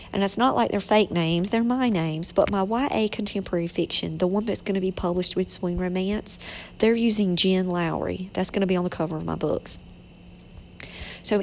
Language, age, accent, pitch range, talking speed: English, 50-69, American, 175-205 Hz, 210 wpm